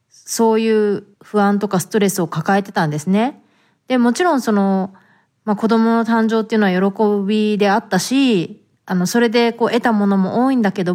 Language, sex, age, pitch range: Japanese, female, 30-49, 190-240 Hz